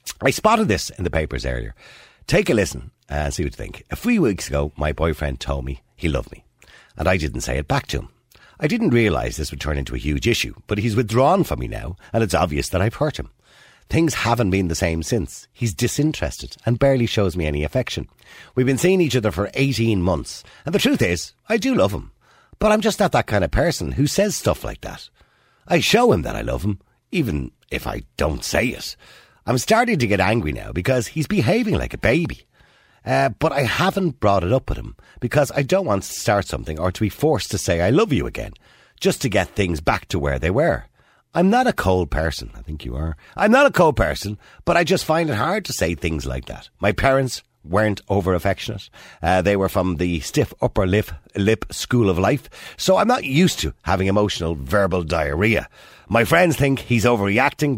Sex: male